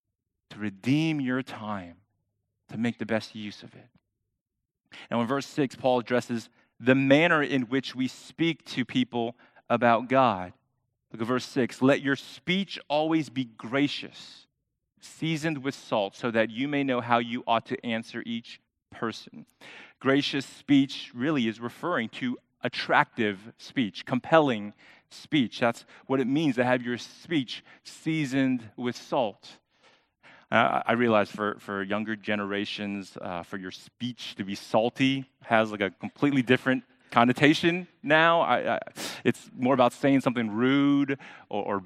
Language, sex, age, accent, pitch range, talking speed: English, male, 30-49, American, 110-140 Hz, 145 wpm